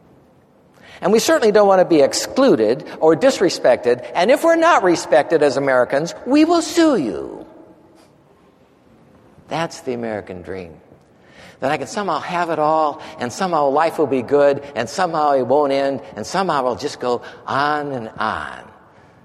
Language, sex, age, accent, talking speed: English, male, 60-79, American, 160 wpm